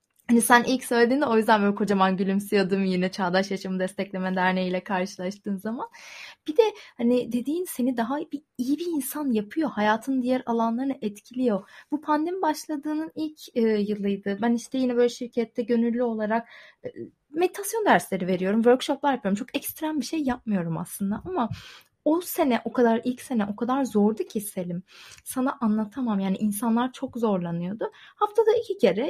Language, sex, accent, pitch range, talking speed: Turkish, female, native, 200-265 Hz, 160 wpm